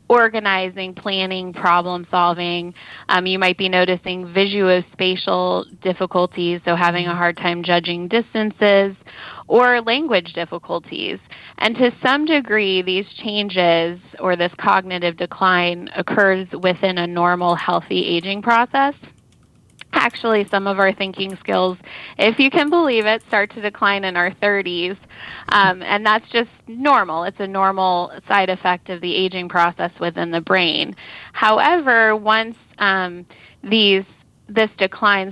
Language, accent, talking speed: English, American, 135 wpm